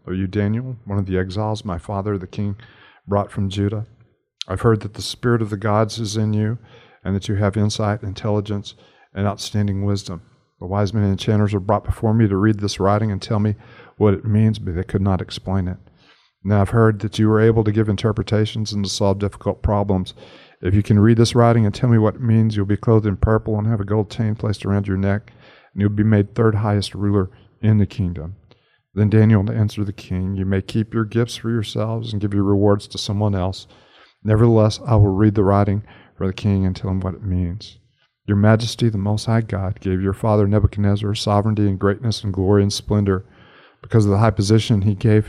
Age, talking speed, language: 50-69, 225 wpm, English